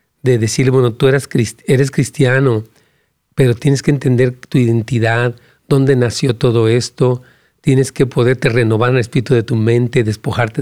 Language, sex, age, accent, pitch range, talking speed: Spanish, male, 40-59, Mexican, 120-160 Hz, 155 wpm